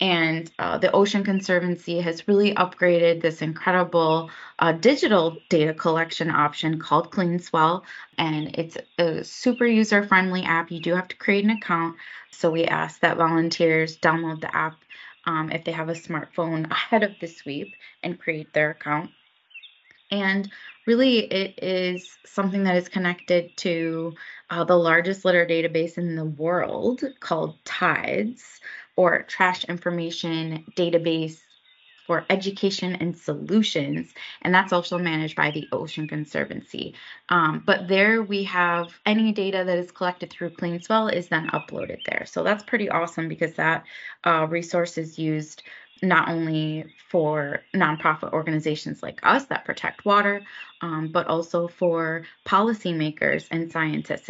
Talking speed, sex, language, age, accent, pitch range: 145 wpm, female, English, 20-39, American, 165-190 Hz